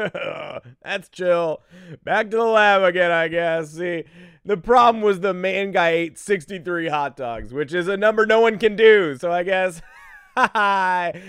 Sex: male